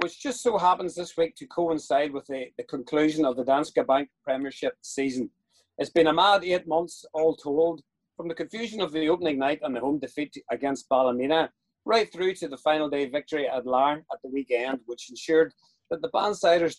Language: English